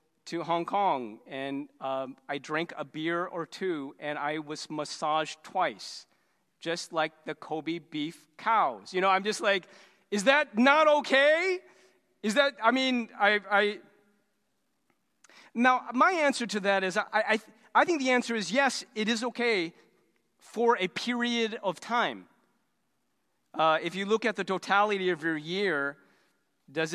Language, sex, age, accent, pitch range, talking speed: English, male, 40-59, American, 155-210 Hz, 155 wpm